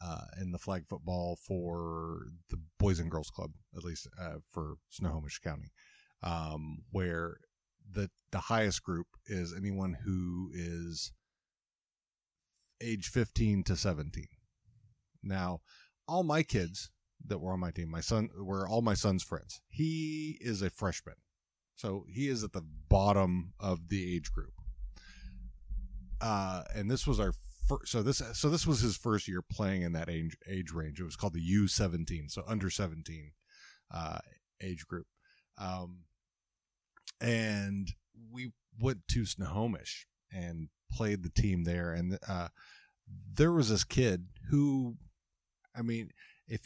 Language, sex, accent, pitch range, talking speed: English, male, American, 85-110 Hz, 145 wpm